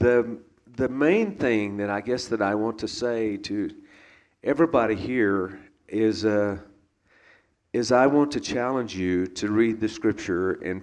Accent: American